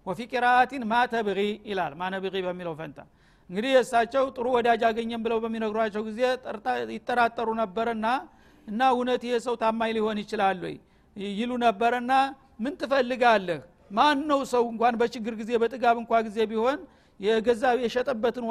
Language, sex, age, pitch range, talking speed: Amharic, male, 50-69, 215-250 Hz, 135 wpm